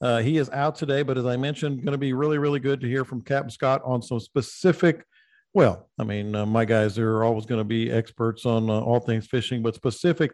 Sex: male